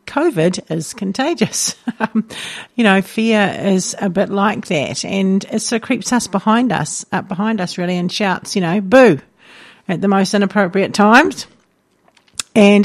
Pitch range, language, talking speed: 185-220 Hz, English, 160 wpm